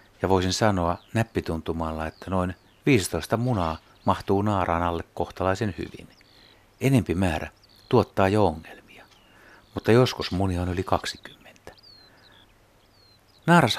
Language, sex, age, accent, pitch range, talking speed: Finnish, male, 60-79, native, 85-105 Hz, 110 wpm